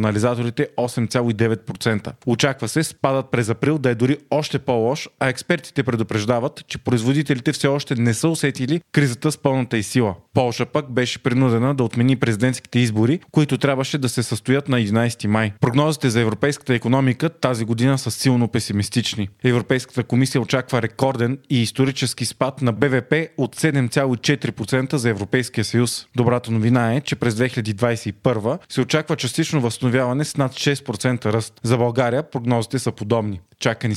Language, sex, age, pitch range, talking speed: Bulgarian, male, 30-49, 115-135 Hz, 150 wpm